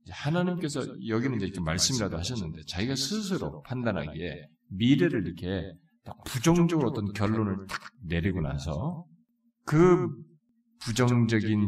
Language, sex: Korean, male